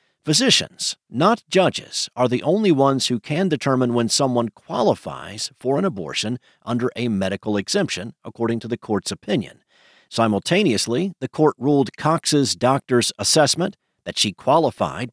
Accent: American